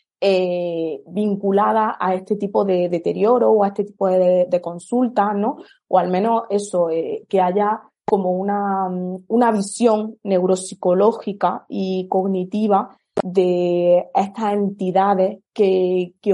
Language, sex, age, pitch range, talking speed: Spanish, female, 20-39, 185-215 Hz, 125 wpm